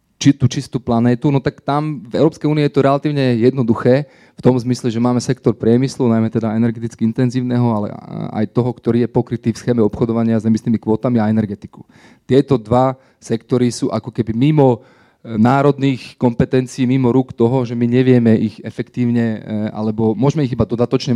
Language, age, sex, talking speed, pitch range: Slovak, 30-49, male, 170 wpm, 115-135 Hz